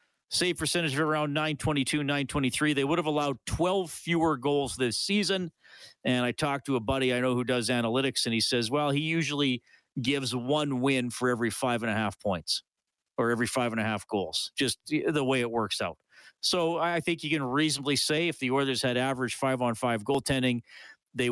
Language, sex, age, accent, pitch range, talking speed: English, male, 40-59, American, 120-160 Hz, 195 wpm